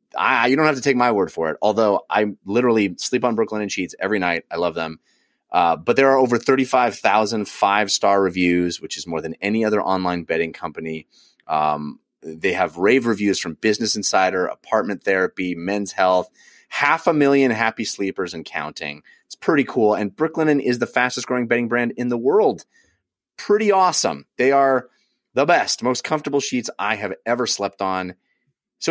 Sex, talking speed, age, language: male, 185 wpm, 30-49, English